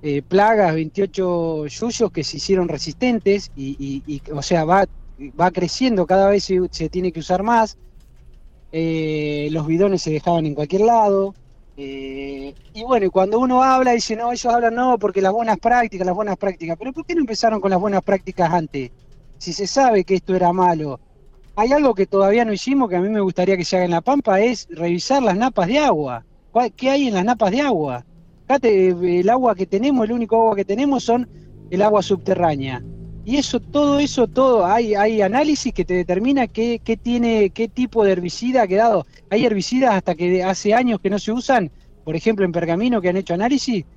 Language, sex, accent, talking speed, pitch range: Spanish, male, Argentinian, 205 wpm, 170-235 Hz